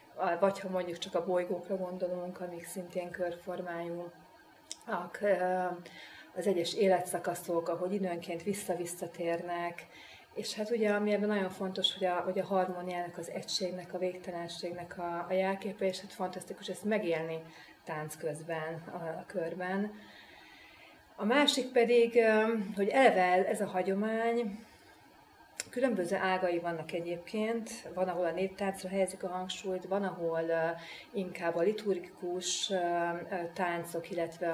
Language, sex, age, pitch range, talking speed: Hungarian, female, 30-49, 170-195 Hz, 130 wpm